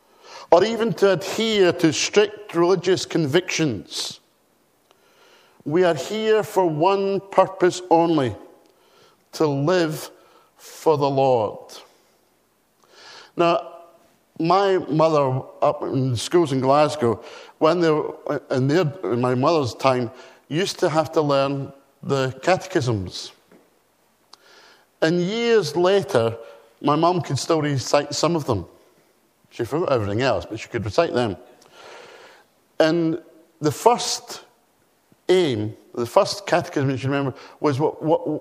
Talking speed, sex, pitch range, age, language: 120 wpm, male, 150-210 Hz, 50-69, English